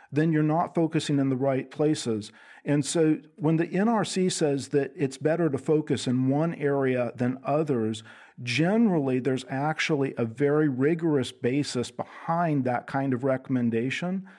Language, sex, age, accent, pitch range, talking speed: English, male, 50-69, American, 130-155 Hz, 150 wpm